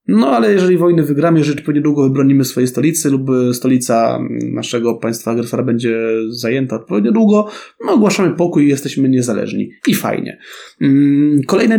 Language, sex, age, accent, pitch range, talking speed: Polish, male, 20-39, native, 120-155 Hz, 150 wpm